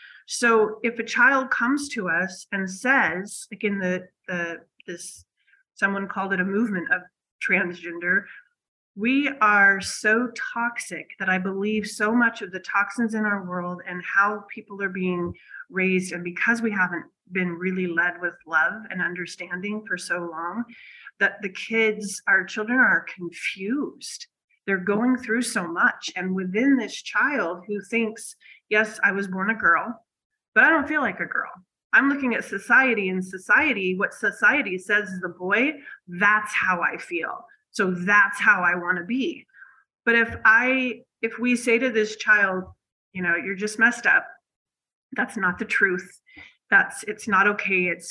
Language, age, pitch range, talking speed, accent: English, 30-49, 185-240 Hz, 165 wpm, American